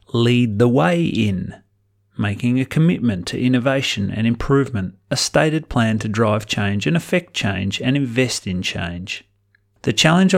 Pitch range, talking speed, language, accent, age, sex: 100-125 Hz, 150 wpm, English, Australian, 30-49, male